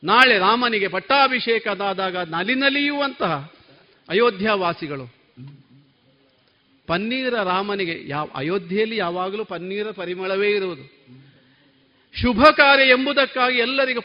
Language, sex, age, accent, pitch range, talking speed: Kannada, male, 50-69, native, 175-255 Hz, 75 wpm